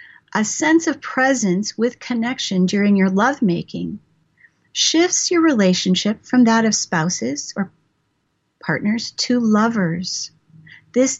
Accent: American